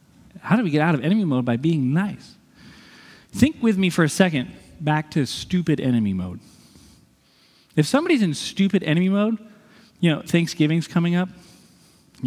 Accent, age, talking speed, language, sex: American, 30-49, 165 wpm, English, male